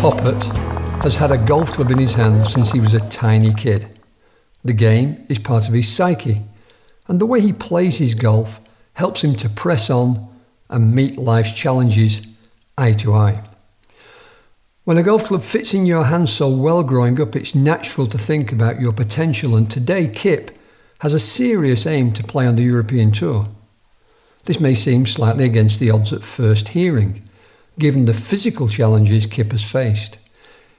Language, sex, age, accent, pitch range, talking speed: English, male, 50-69, British, 110-140 Hz, 175 wpm